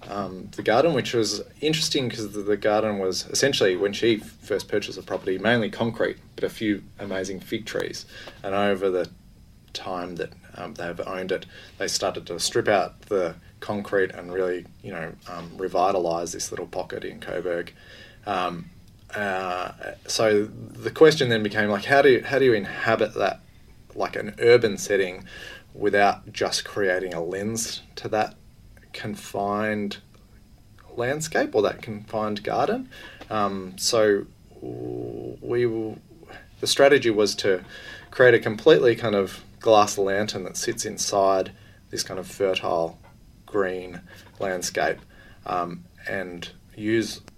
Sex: male